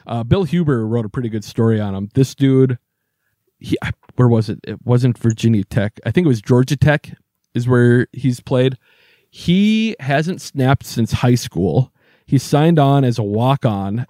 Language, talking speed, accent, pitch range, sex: English, 180 wpm, American, 115-140 Hz, male